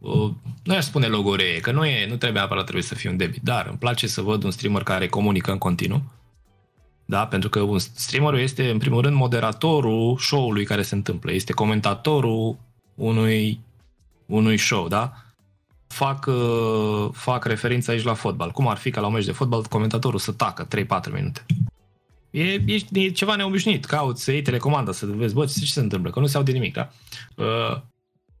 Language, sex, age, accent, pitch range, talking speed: Romanian, male, 20-39, native, 100-130 Hz, 190 wpm